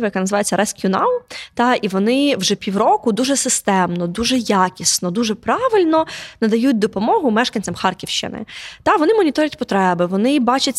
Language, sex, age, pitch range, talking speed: Ukrainian, female, 20-39, 200-255 Hz, 140 wpm